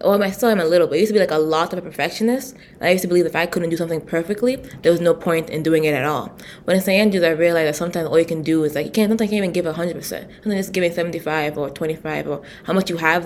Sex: female